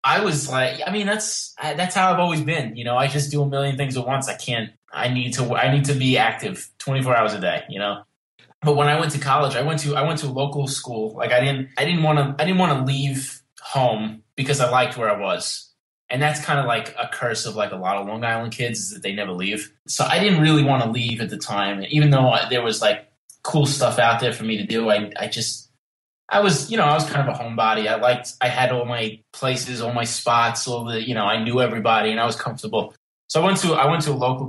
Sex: male